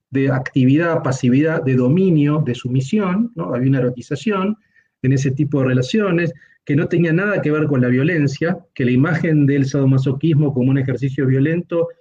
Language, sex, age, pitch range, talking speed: Spanish, male, 40-59, 135-185 Hz, 170 wpm